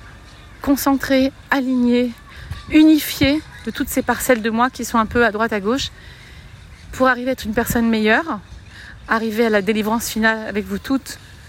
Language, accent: French, French